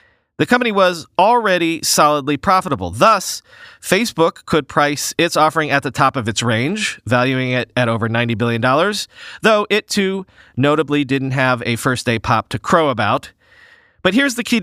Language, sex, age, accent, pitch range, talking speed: English, male, 40-59, American, 125-185 Hz, 165 wpm